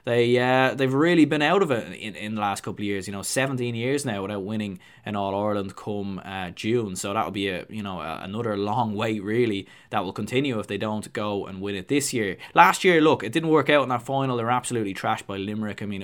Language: English